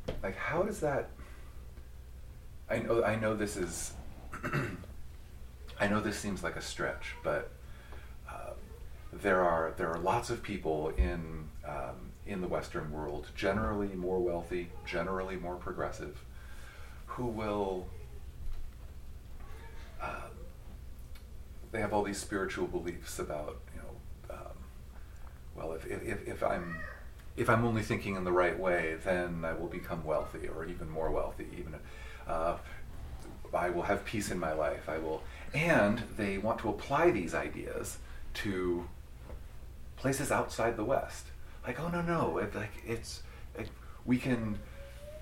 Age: 40-59